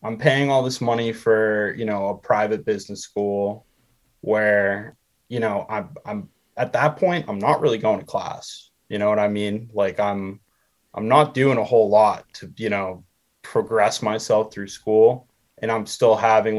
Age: 20-39